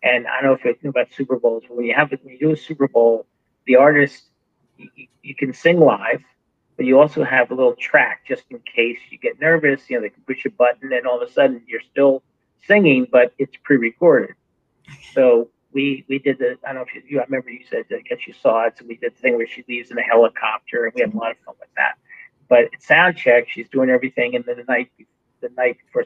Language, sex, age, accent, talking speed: English, male, 40-59, American, 260 wpm